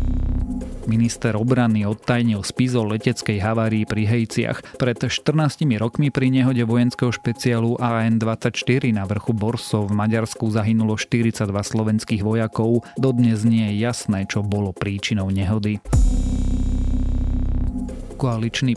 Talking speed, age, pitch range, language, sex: 110 wpm, 30-49, 105-125 Hz, Slovak, male